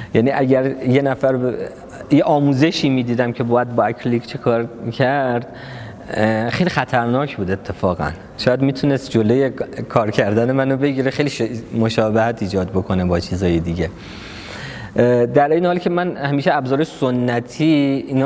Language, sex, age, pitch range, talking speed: Persian, male, 20-39, 110-140 Hz, 135 wpm